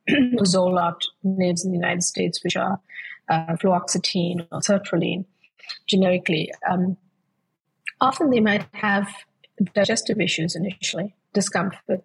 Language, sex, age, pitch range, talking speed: English, female, 30-49, 175-210 Hz, 110 wpm